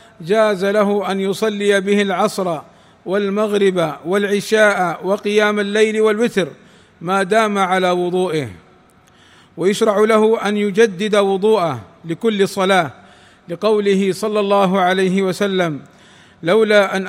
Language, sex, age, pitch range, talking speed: Arabic, male, 50-69, 190-210 Hz, 100 wpm